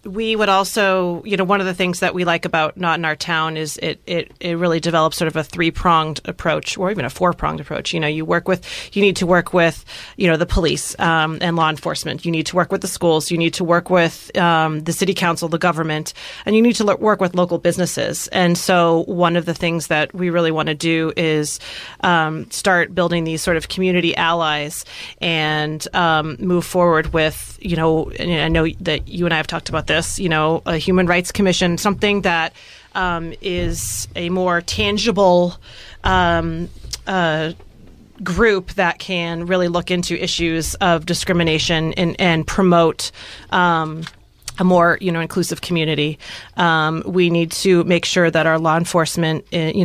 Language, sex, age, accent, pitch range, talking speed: English, female, 30-49, American, 160-180 Hz, 195 wpm